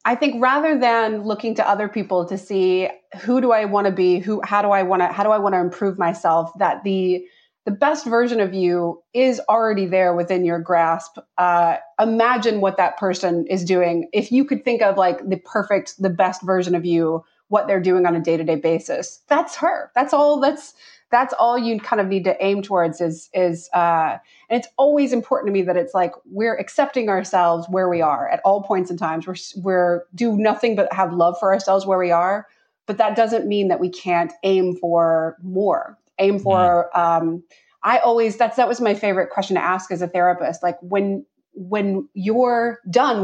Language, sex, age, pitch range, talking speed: English, female, 30-49, 175-220 Hz, 205 wpm